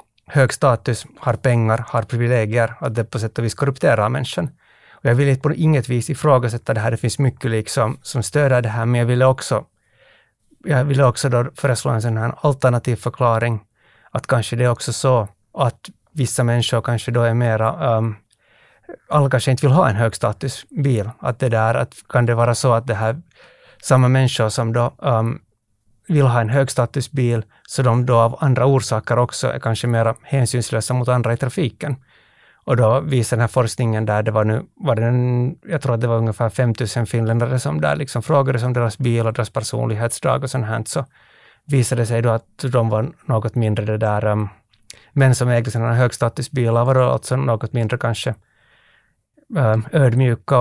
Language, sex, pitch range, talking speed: Swedish, male, 115-135 Hz, 190 wpm